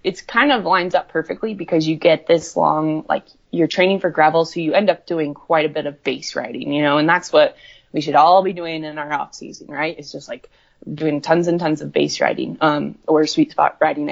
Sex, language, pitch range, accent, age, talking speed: female, English, 150-175 Hz, American, 20-39, 240 wpm